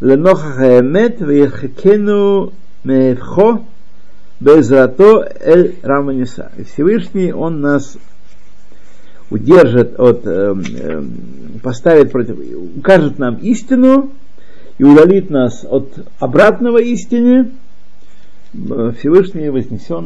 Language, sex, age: Russian, male, 50-69